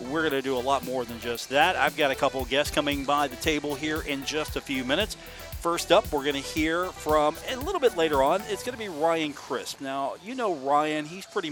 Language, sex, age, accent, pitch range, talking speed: English, male, 40-59, American, 135-175 Hz, 260 wpm